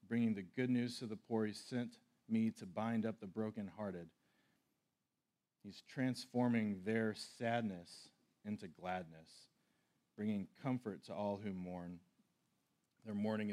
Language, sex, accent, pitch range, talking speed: English, male, American, 95-115 Hz, 130 wpm